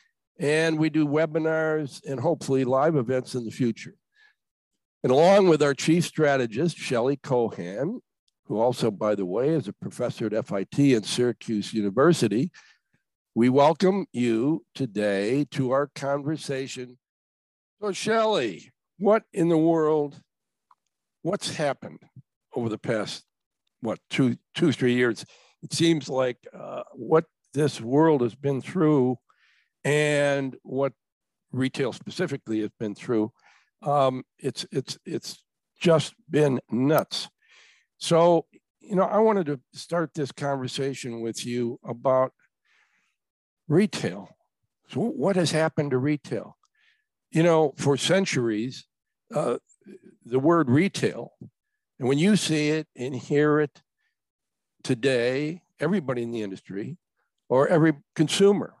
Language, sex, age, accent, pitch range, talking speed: English, male, 60-79, American, 130-165 Hz, 125 wpm